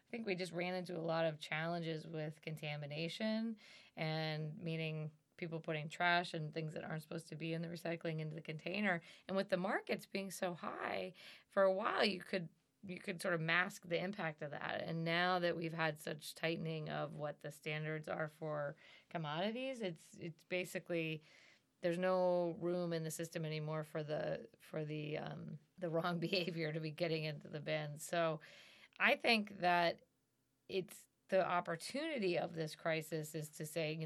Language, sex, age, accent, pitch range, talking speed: English, female, 20-39, American, 160-180 Hz, 180 wpm